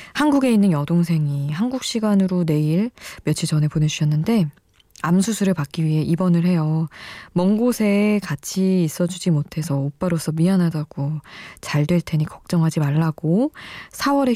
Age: 20-39